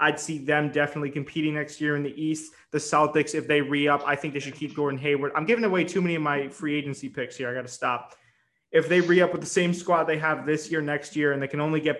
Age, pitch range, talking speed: 20-39, 140-160 Hz, 285 wpm